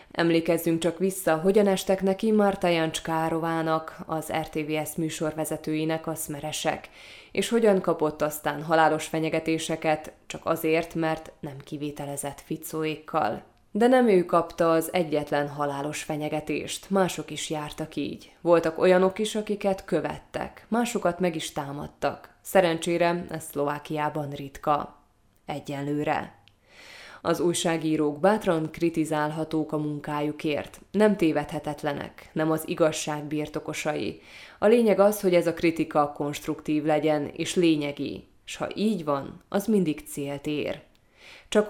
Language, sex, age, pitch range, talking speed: Hungarian, female, 20-39, 150-175 Hz, 120 wpm